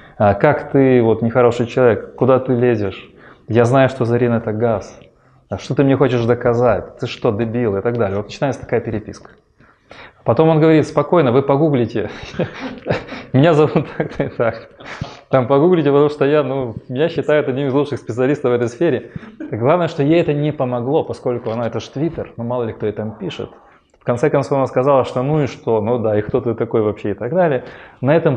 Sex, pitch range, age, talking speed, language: male, 115-145 Hz, 20-39, 200 wpm, Russian